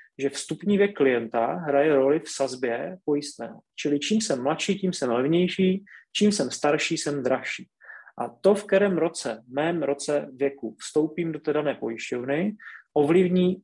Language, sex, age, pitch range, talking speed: Czech, male, 30-49, 140-180 Hz, 155 wpm